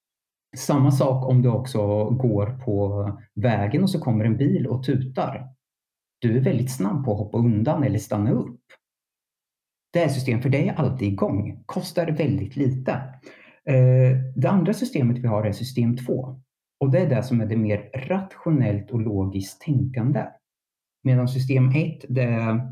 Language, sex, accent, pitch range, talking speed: Swedish, male, Norwegian, 110-135 Hz, 165 wpm